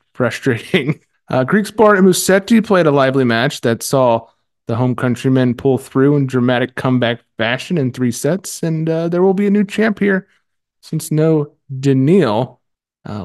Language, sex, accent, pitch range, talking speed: English, male, American, 115-145 Hz, 165 wpm